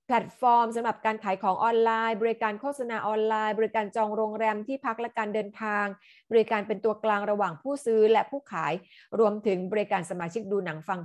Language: Thai